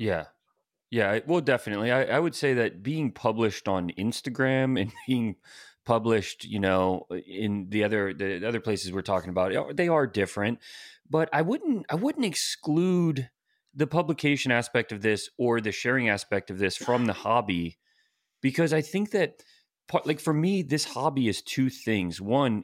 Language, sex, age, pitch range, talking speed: English, male, 30-49, 100-145 Hz, 165 wpm